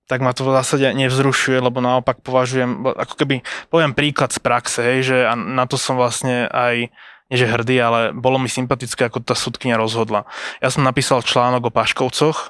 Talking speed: 185 wpm